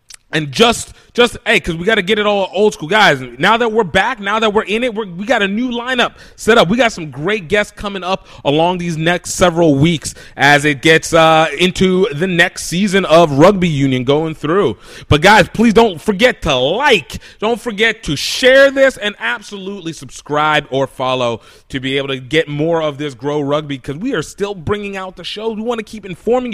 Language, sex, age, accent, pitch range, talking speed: English, male, 30-49, American, 150-230 Hz, 215 wpm